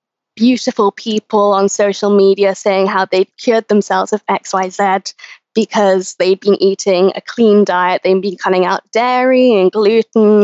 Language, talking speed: English, 165 wpm